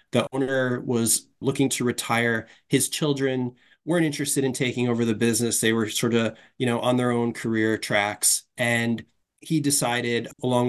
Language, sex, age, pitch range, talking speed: English, male, 20-39, 115-135 Hz, 170 wpm